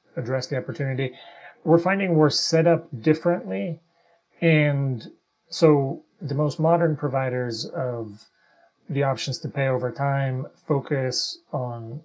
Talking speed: 120 wpm